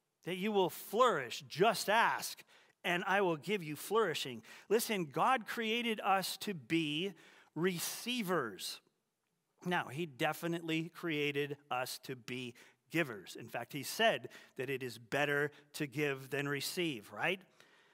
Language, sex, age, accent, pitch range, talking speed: English, male, 40-59, American, 145-200 Hz, 135 wpm